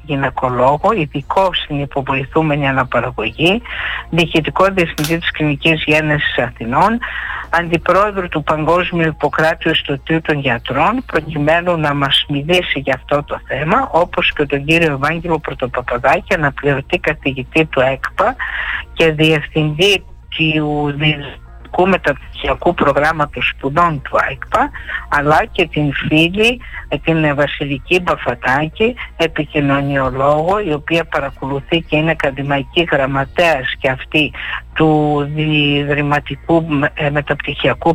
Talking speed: 100 wpm